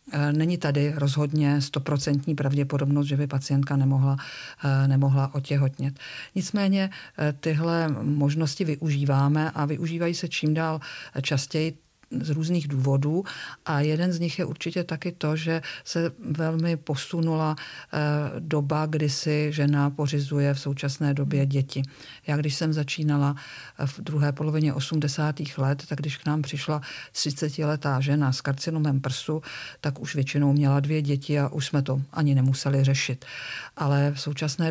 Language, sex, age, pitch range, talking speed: Czech, female, 50-69, 140-160 Hz, 140 wpm